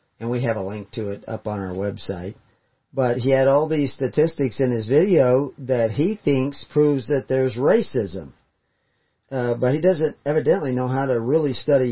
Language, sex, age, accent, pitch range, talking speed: English, male, 40-59, American, 115-135 Hz, 185 wpm